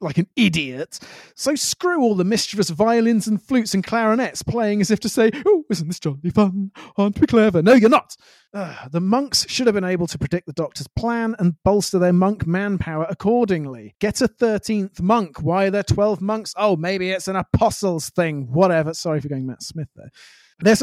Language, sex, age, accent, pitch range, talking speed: English, male, 30-49, British, 165-220 Hz, 200 wpm